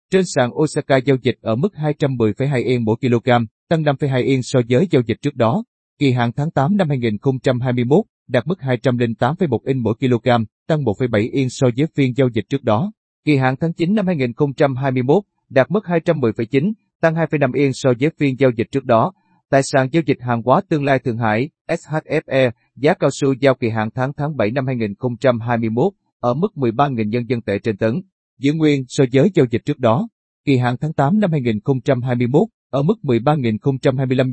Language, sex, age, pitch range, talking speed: Vietnamese, male, 30-49, 120-150 Hz, 190 wpm